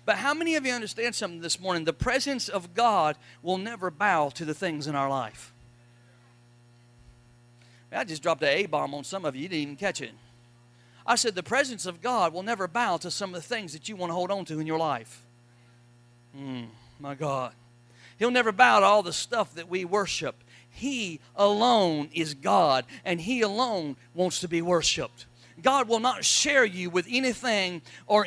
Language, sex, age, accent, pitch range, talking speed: English, male, 50-69, American, 120-205 Hz, 195 wpm